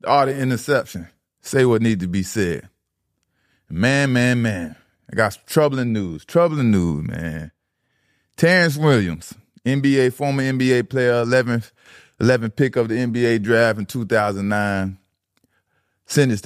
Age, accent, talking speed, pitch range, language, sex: 30-49, American, 140 wpm, 95-120 Hz, English, male